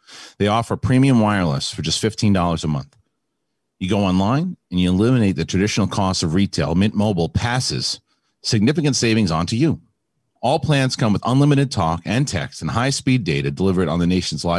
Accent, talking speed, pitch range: American, 175 wpm, 90-130 Hz